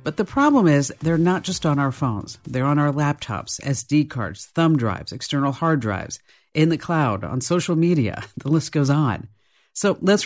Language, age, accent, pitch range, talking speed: English, 50-69, American, 120-170 Hz, 195 wpm